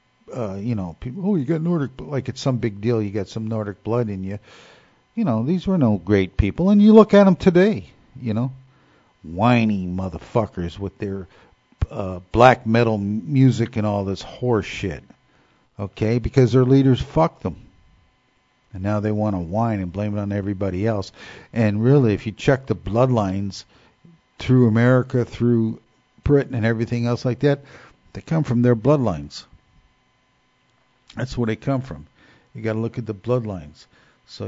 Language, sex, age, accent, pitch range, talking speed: English, male, 50-69, American, 100-125 Hz, 175 wpm